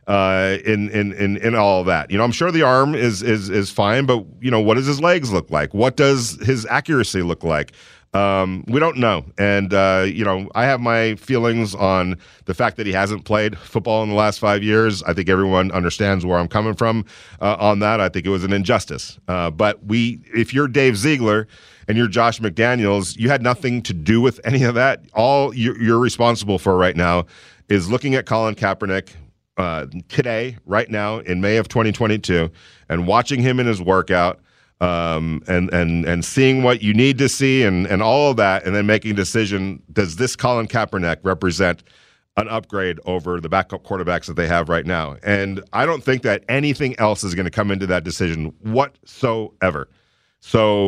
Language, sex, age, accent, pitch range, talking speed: English, male, 40-59, American, 95-115 Hz, 200 wpm